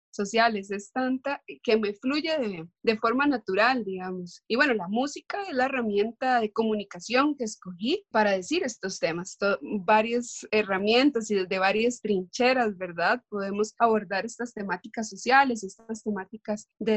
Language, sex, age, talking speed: Spanish, female, 30-49, 150 wpm